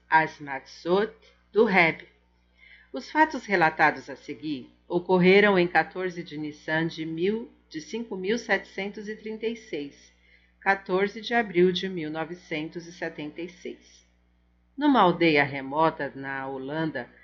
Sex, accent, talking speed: female, Brazilian, 90 wpm